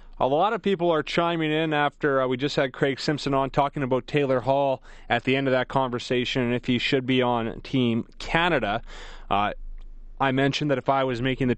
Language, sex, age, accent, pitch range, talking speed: English, male, 30-49, American, 120-140 Hz, 220 wpm